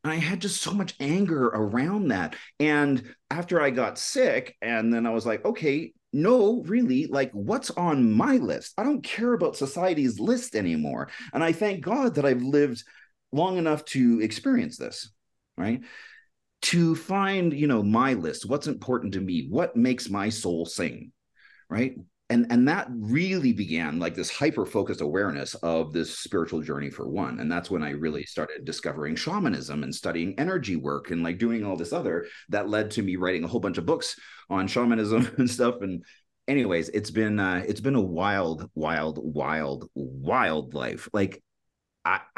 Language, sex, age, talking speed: English, male, 30-49, 180 wpm